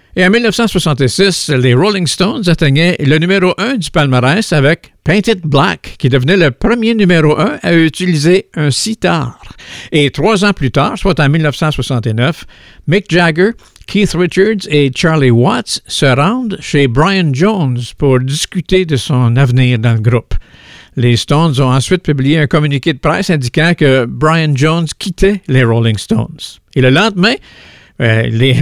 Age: 60-79